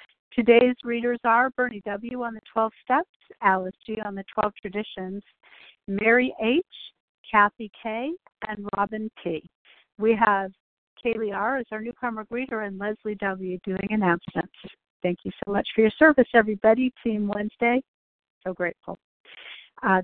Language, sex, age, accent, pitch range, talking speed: English, female, 50-69, American, 195-235 Hz, 145 wpm